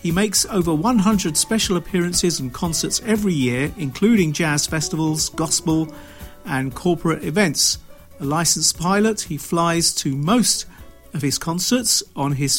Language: English